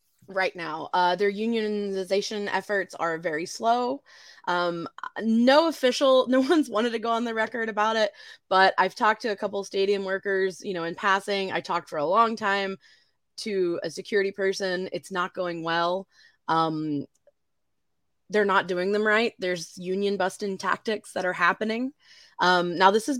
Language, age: English, 20-39